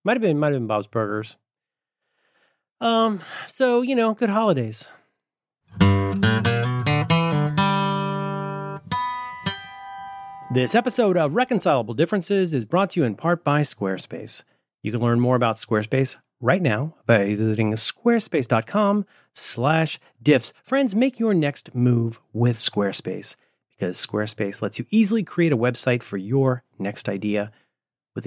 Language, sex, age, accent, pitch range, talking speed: English, male, 40-59, American, 120-195 Hz, 125 wpm